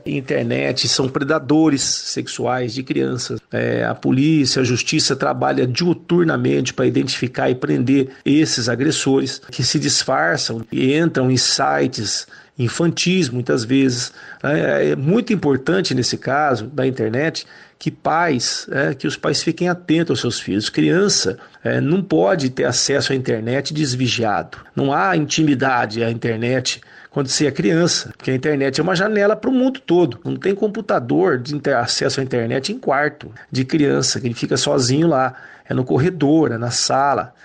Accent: Brazilian